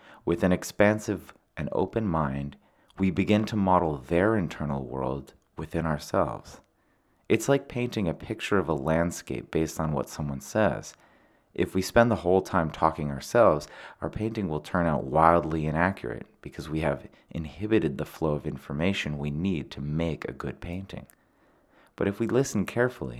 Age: 30-49